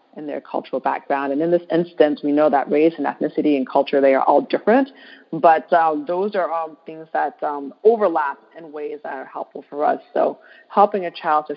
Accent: American